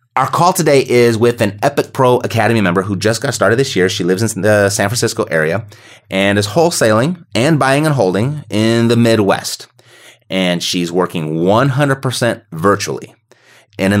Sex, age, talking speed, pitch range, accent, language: male, 30-49, 180 wpm, 95-120 Hz, American, English